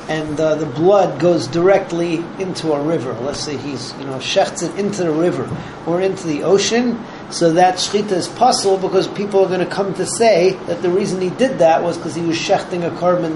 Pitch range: 160-190 Hz